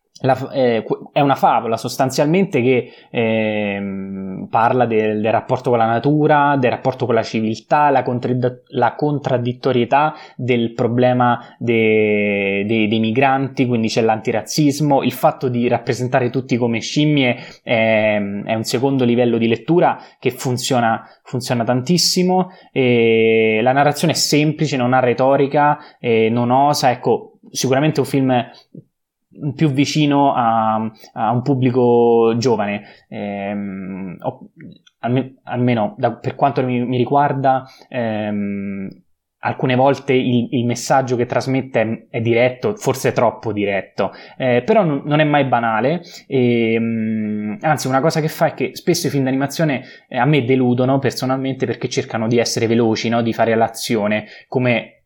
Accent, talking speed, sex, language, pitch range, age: native, 135 wpm, male, Italian, 115-135 Hz, 20-39